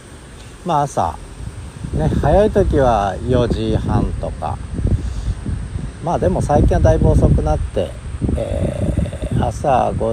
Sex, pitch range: male, 90-120 Hz